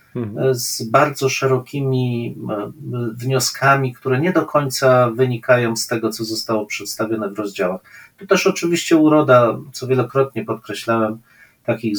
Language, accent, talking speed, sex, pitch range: Polish, native, 120 wpm, male, 115-135 Hz